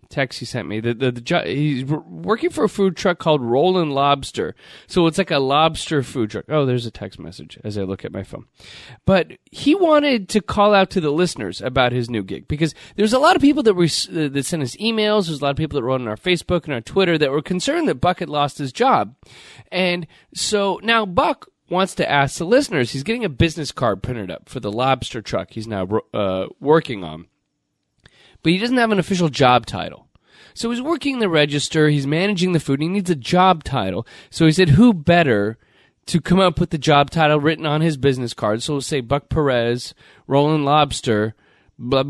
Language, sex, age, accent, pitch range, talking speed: English, male, 30-49, American, 115-175 Hz, 220 wpm